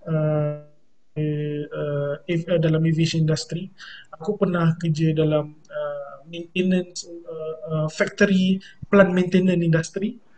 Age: 20-39